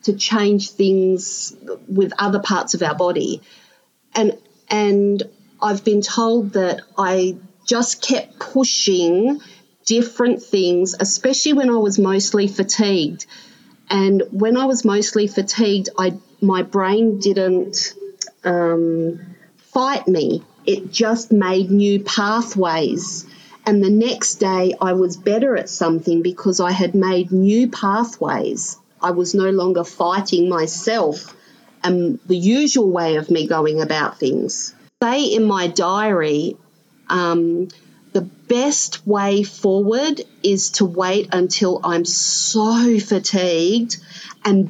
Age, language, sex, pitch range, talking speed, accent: 40-59, English, female, 180-215 Hz, 125 wpm, Australian